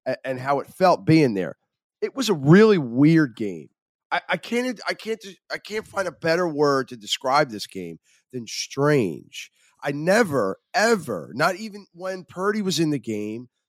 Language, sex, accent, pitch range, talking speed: English, male, American, 140-195 Hz, 175 wpm